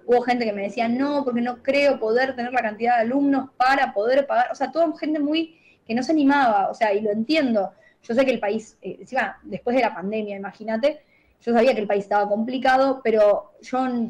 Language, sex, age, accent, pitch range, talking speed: Spanish, female, 10-29, Argentinian, 225-290 Hz, 220 wpm